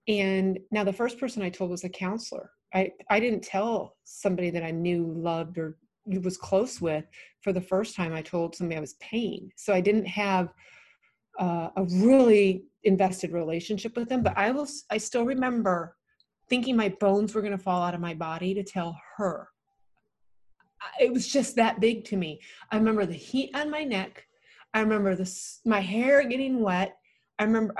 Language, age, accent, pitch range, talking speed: English, 30-49, American, 185-255 Hz, 190 wpm